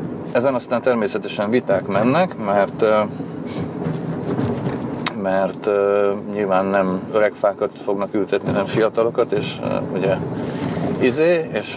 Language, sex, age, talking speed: Hungarian, male, 40-59, 95 wpm